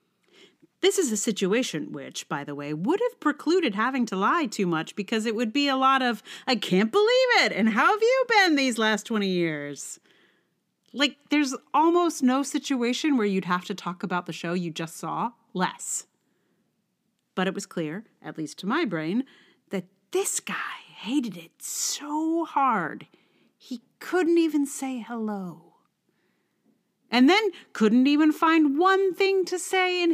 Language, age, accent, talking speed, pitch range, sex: English, 40-59, American, 165 wpm, 185-300 Hz, female